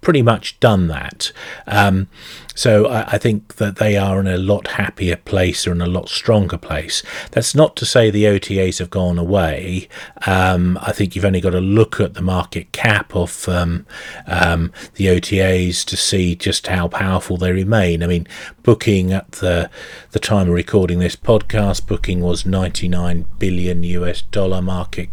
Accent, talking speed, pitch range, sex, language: British, 175 wpm, 90-105 Hz, male, English